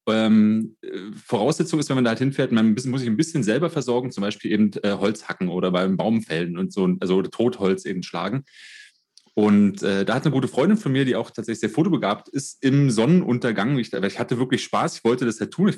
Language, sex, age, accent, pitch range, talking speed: German, male, 30-49, German, 110-145 Hz, 225 wpm